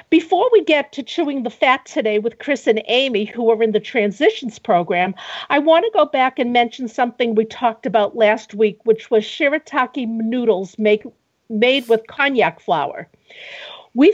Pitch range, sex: 225-285 Hz, female